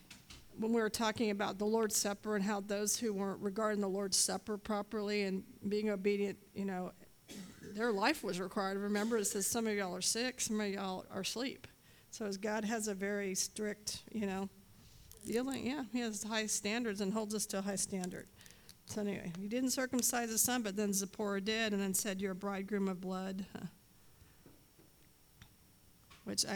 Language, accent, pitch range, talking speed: English, American, 195-225 Hz, 185 wpm